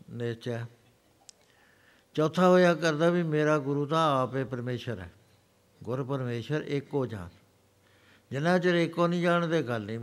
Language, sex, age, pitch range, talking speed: Punjabi, male, 60-79, 115-145 Hz, 125 wpm